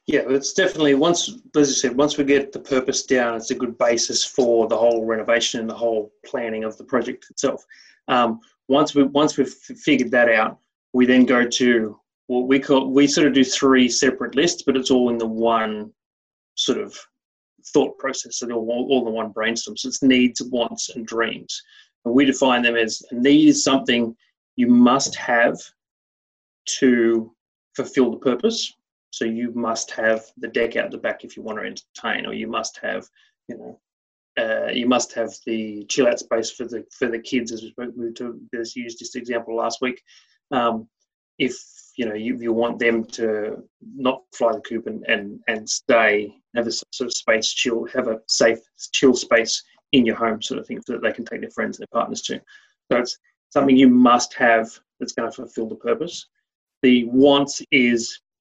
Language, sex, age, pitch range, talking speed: English, male, 30-49, 115-135 Hz, 195 wpm